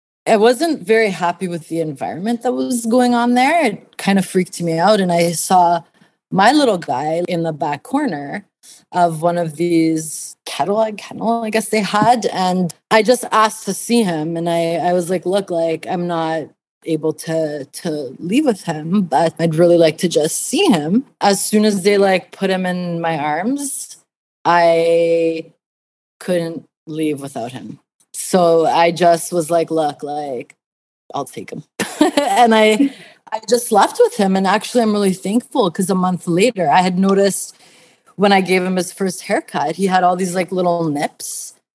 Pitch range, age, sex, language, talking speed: 165-215 Hz, 20-39, female, English, 180 wpm